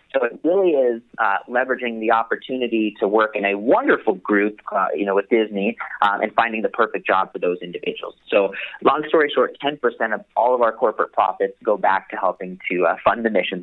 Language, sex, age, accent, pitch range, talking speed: English, male, 30-49, American, 110-140 Hz, 210 wpm